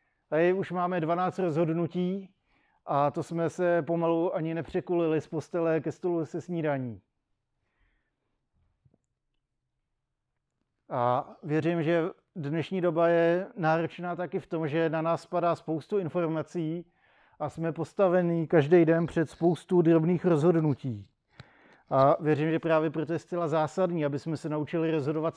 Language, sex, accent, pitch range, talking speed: Czech, male, native, 150-170 Hz, 130 wpm